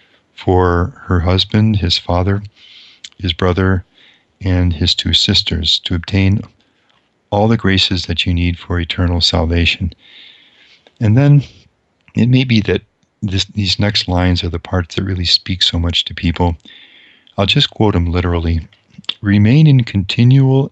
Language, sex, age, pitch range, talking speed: English, male, 50-69, 90-105 Hz, 140 wpm